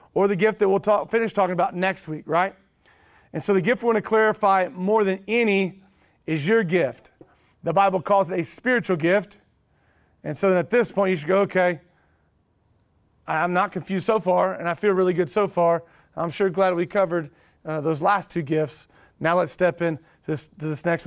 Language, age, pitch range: English, 30-49, 165-200 Hz